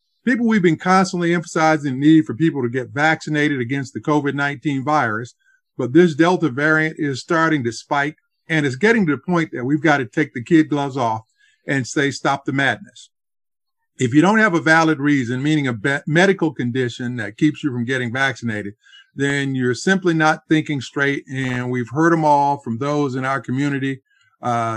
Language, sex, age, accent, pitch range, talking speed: English, male, 50-69, American, 135-165 Hz, 190 wpm